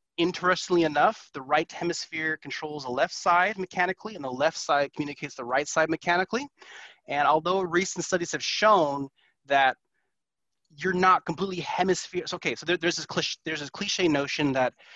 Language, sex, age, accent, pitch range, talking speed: English, male, 30-49, American, 140-185 Hz, 170 wpm